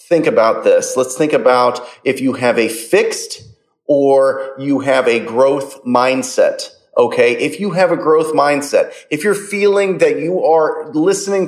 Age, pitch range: 30-49, 140-205 Hz